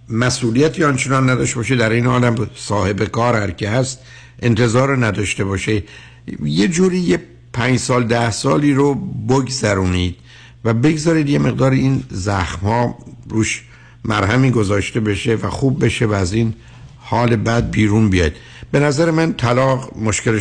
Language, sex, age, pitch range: Persian, male, 60-79, 105-130 Hz